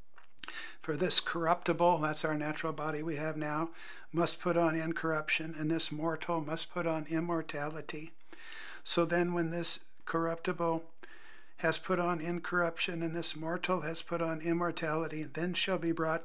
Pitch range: 150-170 Hz